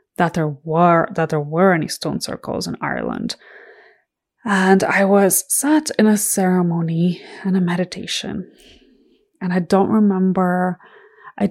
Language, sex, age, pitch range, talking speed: English, female, 20-39, 170-215 Hz, 135 wpm